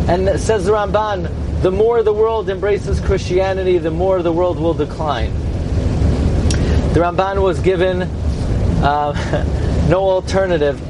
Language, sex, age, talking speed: English, male, 30-49, 125 wpm